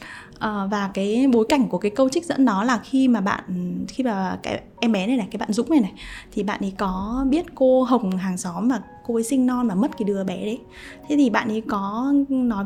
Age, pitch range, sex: 10-29, 210-265 Hz, female